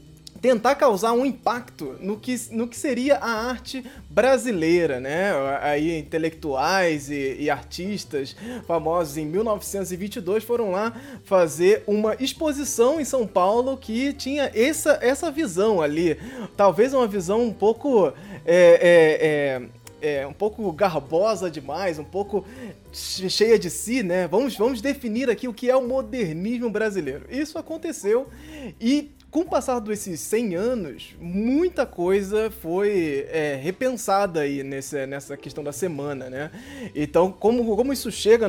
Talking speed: 135 wpm